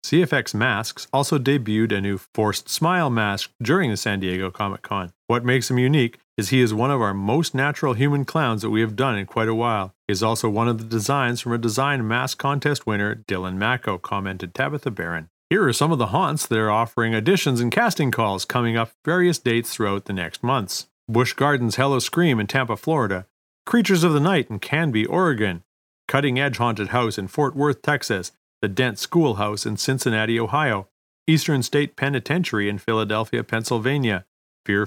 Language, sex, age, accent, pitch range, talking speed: English, male, 40-59, American, 105-140 Hz, 190 wpm